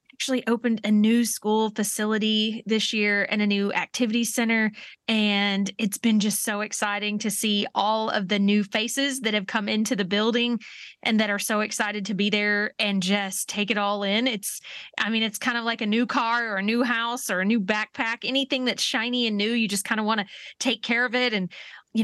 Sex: female